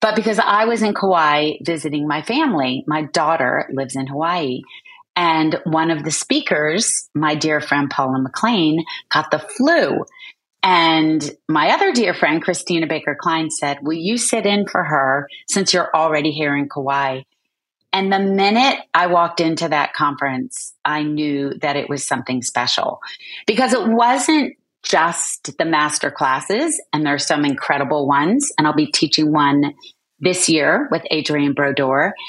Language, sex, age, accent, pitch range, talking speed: English, female, 30-49, American, 150-215 Hz, 160 wpm